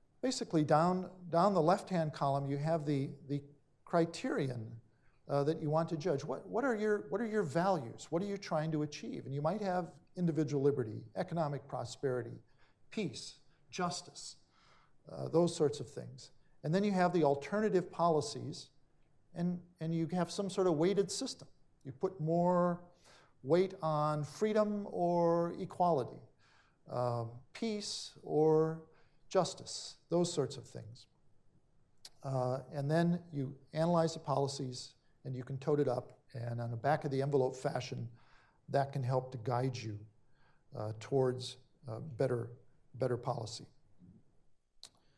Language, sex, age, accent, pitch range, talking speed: English, male, 50-69, American, 130-170 Hz, 145 wpm